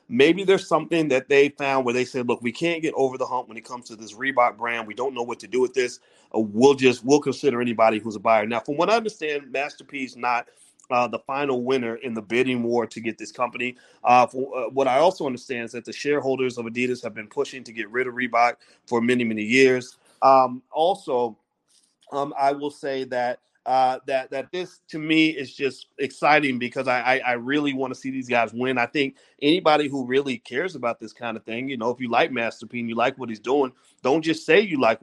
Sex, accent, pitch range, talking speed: male, American, 125-170 Hz, 240 wpm